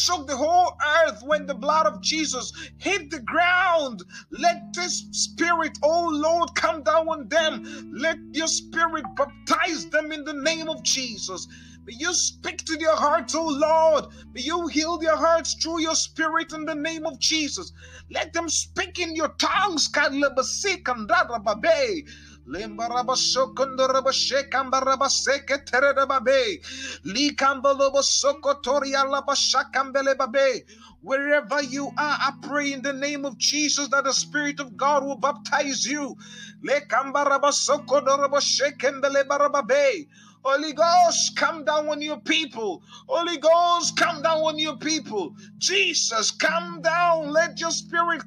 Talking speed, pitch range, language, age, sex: 120 wpm, 270-320 Hz, Finnish, 30-49, male